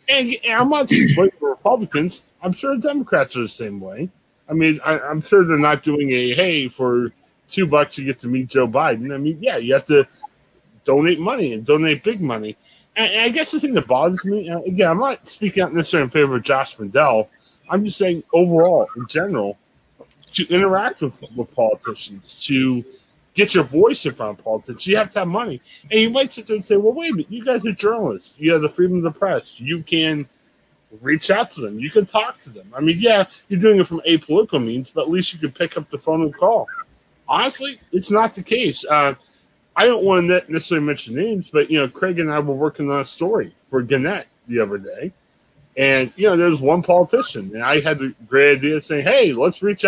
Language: English